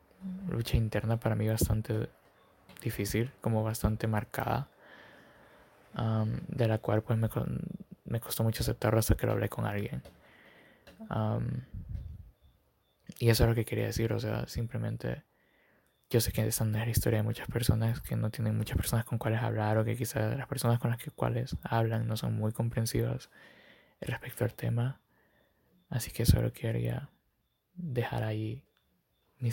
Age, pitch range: 20-39, 110-120 Hz